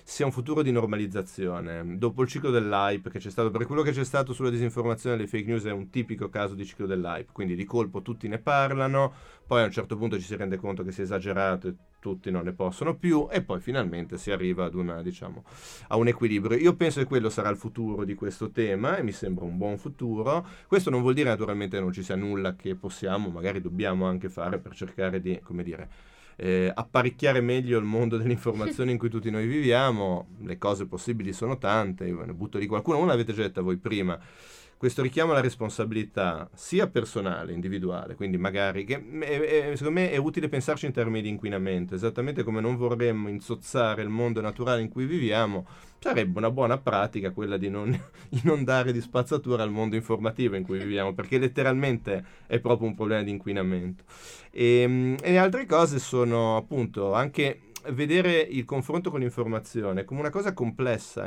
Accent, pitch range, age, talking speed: native, 100-125 Hz, 30-49, 200 wpm